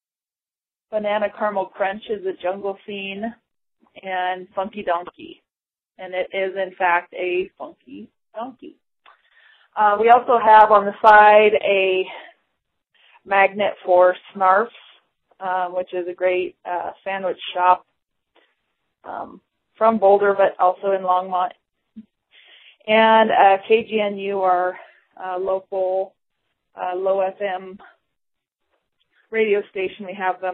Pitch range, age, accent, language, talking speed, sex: 185-210 Hz, 30-49, American, English, 110 wpm, female